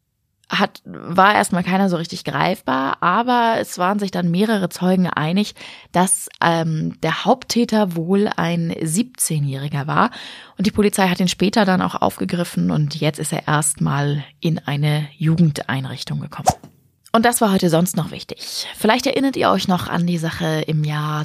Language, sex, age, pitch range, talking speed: German, female, 20-39, 160-200 Hz, 165 wpm